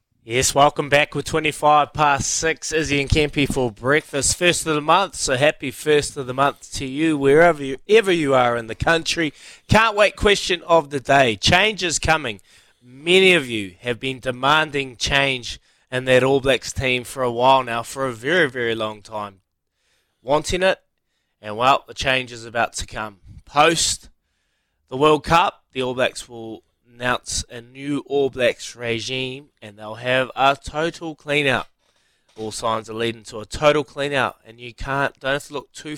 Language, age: English, 20-39